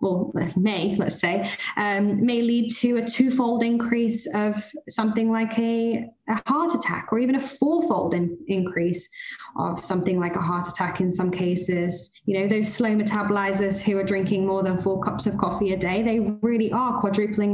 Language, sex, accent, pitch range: English, female, British, 200-235 Hz